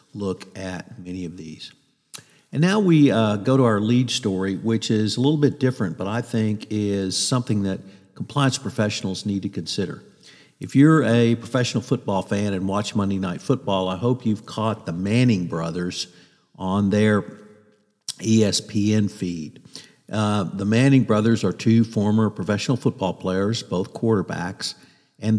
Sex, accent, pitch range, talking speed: male, American, 100-120 Hz, 155 wpm